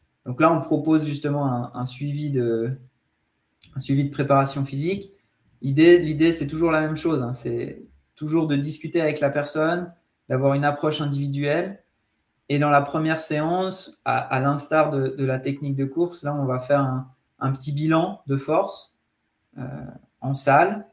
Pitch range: 130-155 Hz